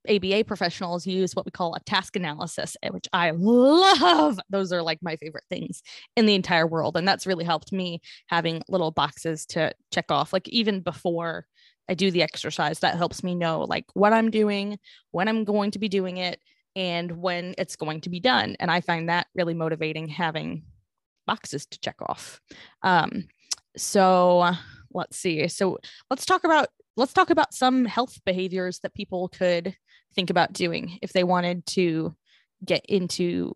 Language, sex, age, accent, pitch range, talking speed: English, female, 20-39, American, 170-210 Hz, 175 wpm